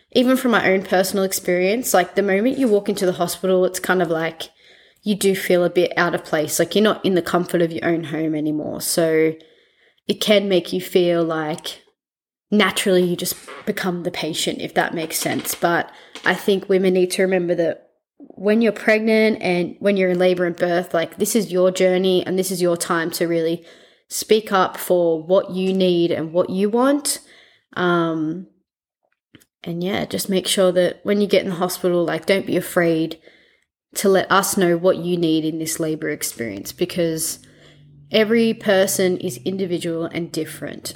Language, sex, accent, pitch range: English, female, Australian, 170-195 Hz